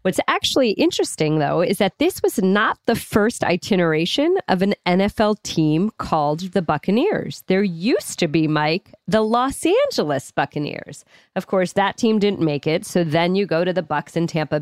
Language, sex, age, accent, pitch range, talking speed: English, female, 40-59, American, 185-275 Hz, 180 wpm